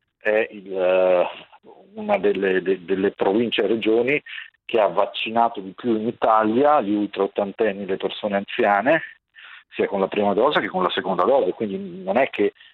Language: Italian